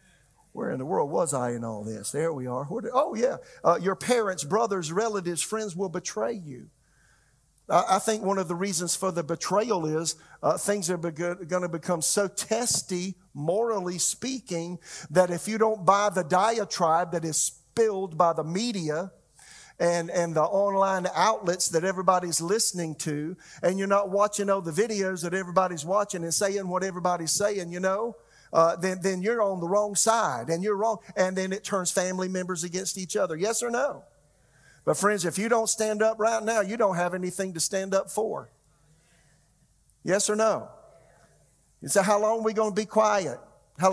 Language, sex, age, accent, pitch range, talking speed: English, male, 50-69, American, 170-205 Hz, 185 wpm